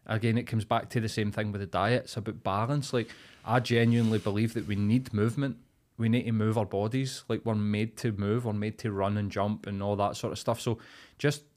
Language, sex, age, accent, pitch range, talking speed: English, male, 20-39, British, 105-125 Hz, 245 wpm